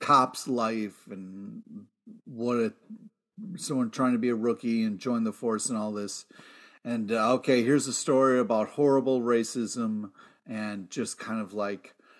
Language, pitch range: English, 120-160 Hz